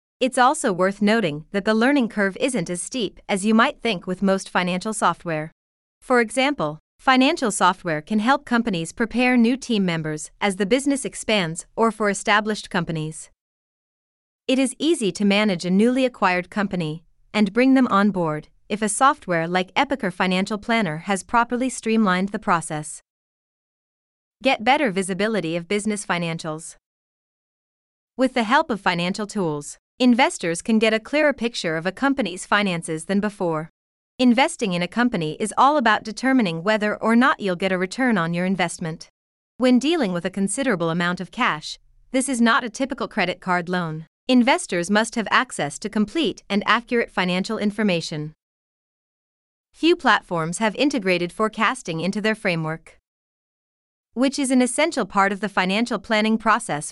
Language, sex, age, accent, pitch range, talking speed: English, female, 30-49, American, 180-245 Hz, 160 wpm